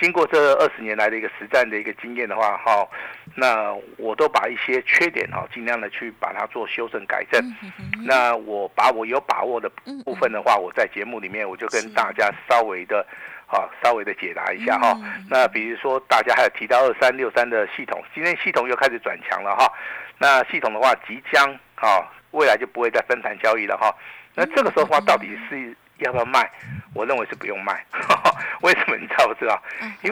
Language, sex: Chinese, male